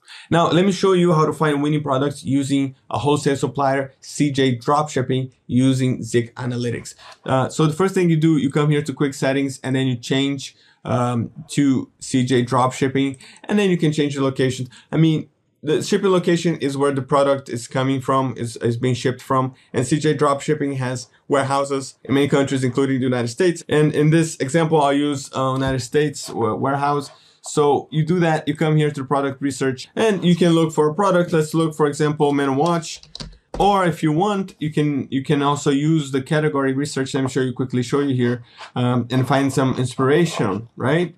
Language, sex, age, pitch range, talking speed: English, male, 20-39, 130-155 Hz, 200 wpm